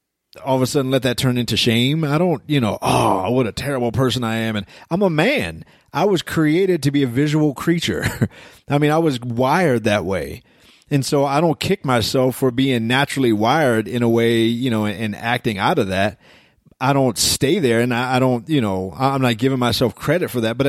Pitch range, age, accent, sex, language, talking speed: 110-135 Hz, 30-49, American, male, English, 225 wpm